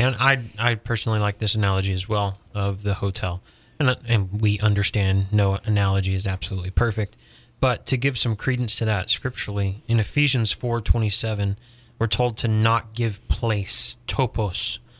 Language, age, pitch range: English, 30-49, 105-120 Hz